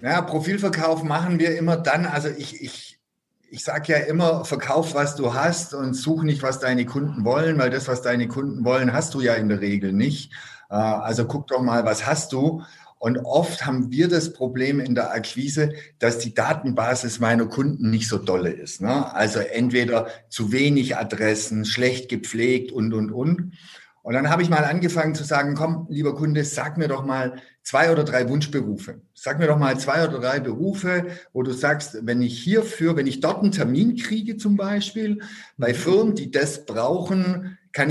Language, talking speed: German, 190 wpm